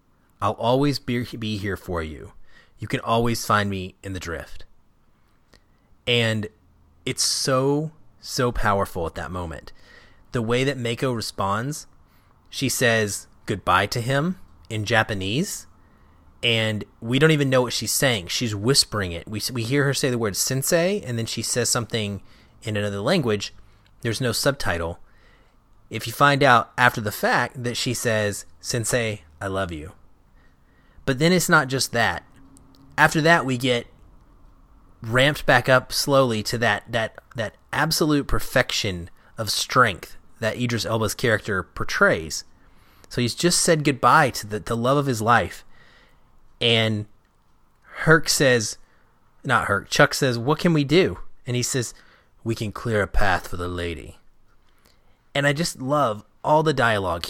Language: English